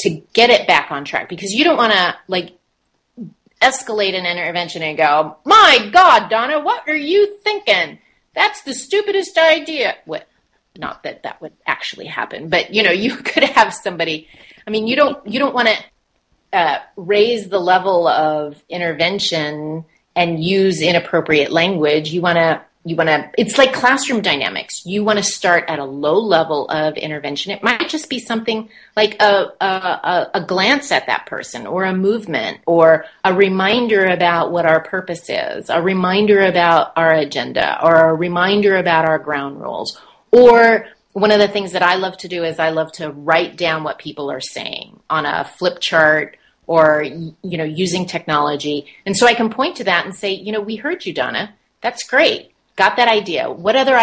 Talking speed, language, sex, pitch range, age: 185 wpm, English, female, 160-220 Hz, 30-49